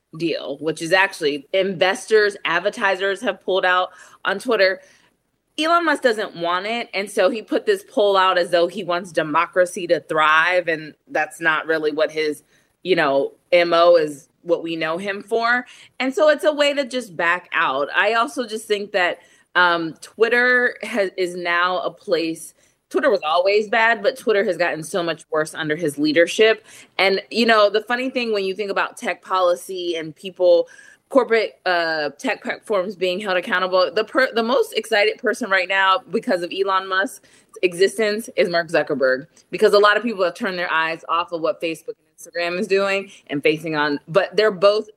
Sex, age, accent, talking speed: female, 20-39, American, 185 wpm